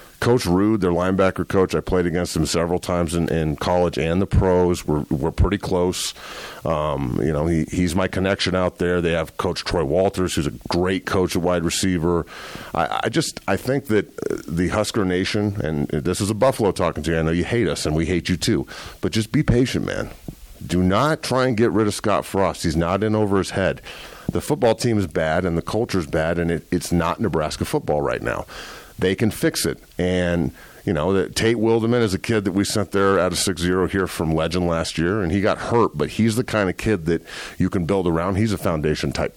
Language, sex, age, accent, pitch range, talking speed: English, male, 40-59, American, 85-105 Hz, 230 wpm